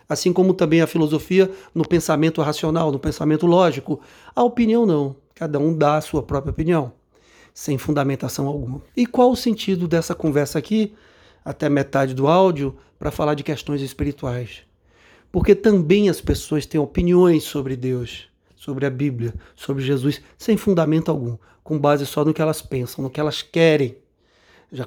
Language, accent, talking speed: Portuguese, Brazilian, 165 wpm